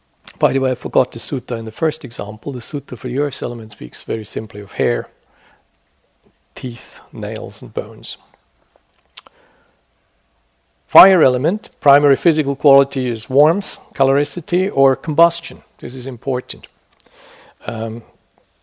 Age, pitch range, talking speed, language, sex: 50-69, 120-145 Hz, 130 wpm, English, male